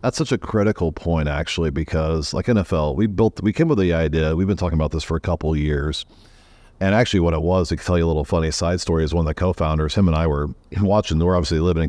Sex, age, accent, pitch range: male, 40-59, American, 75-95 Hz